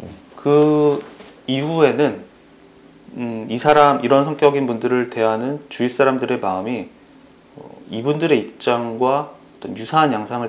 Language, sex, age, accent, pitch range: Korean, male, 30-49, native, 110-140 Hz